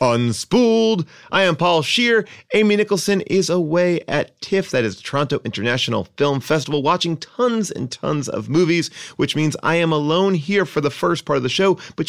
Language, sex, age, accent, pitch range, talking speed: English, male, 30-49, American, 120-175 Hz, 190 wpm